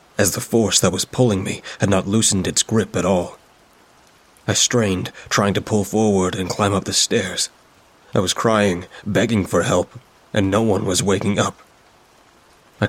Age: 20-39